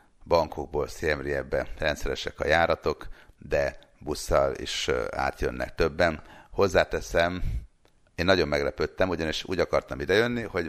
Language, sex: Hungarian, male